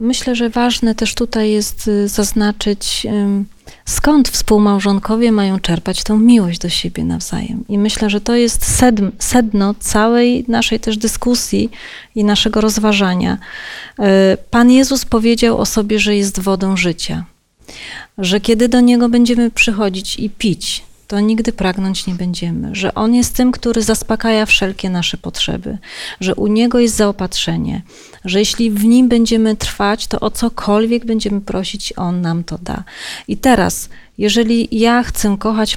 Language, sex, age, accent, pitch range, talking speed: Polish, female, 30-49, native, 195-235 Hz, 145 wpm